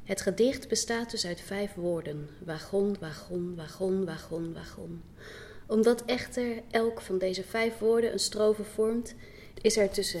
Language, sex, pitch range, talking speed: Dutch, female, 185-220 Hz, 145 wpm